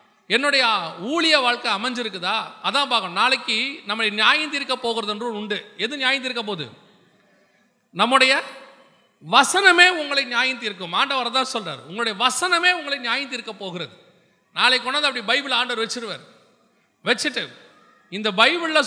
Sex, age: male, 30-49